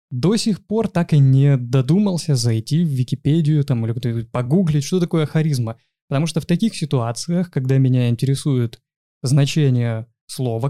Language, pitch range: Russian, 130-165 Hz